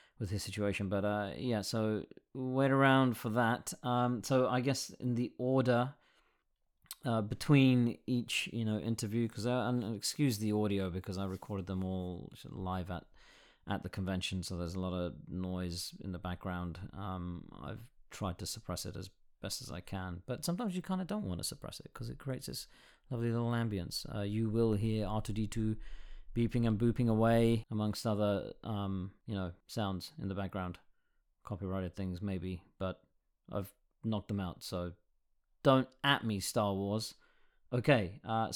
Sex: male